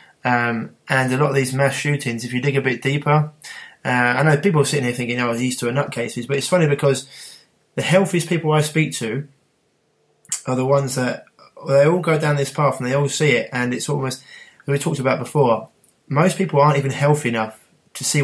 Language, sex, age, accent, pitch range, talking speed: English, male, 20-39, British, 120-145 Hz, 225 wpm